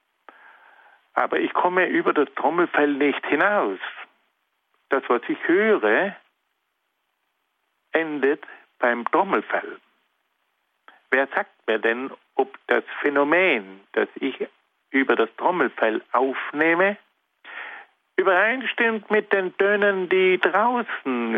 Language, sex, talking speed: German, male, 95 wpm